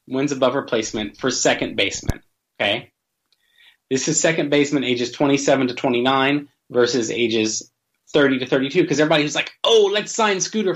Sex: male